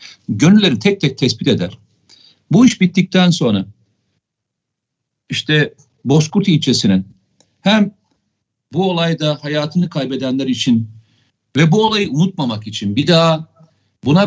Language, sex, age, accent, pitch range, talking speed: Turkish, male, 50-69, native, 125-170 Hz, 110 wpm